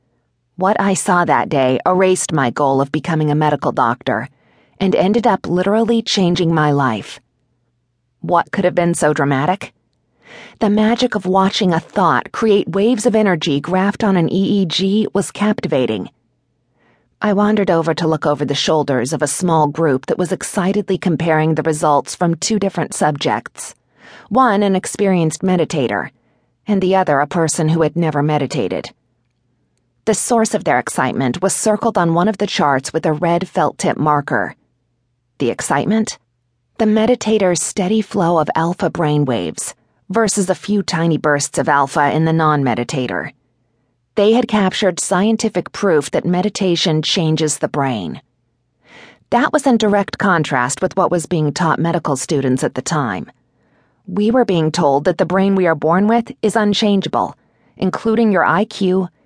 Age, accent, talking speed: 40-59, American, 155 wpm